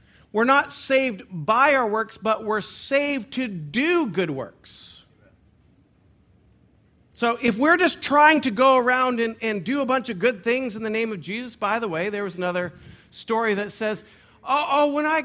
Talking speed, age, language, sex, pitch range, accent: 185 wpm, 50-69, English, male, 165-275 Hz, American